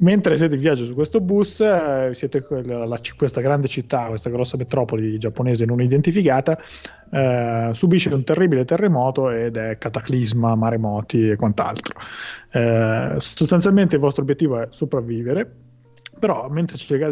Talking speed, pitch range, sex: 140 wpm, 115-145 Hz, male